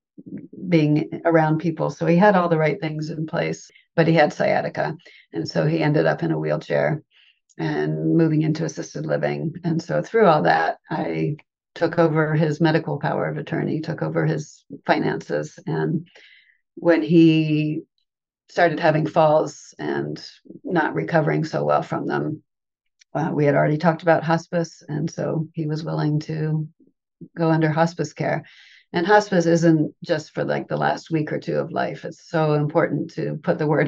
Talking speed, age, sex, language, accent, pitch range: 170 wpm, 40-59, female, English, American, 150-170 Hz